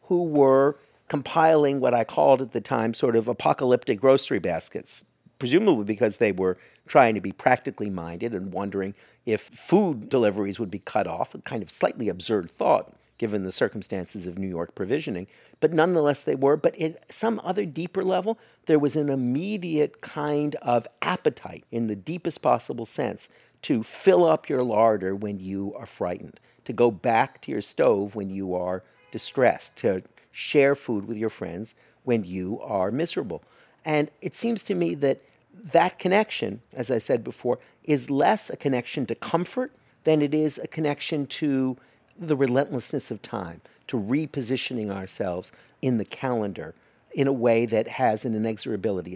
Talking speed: 165 wpm